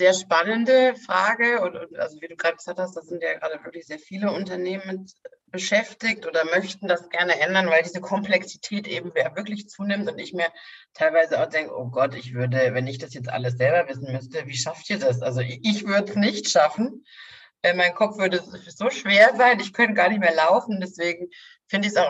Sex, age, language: female, 50-69, English